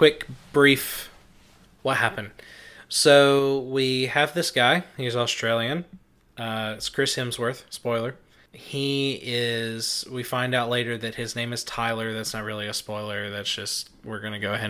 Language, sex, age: English, male, 20-39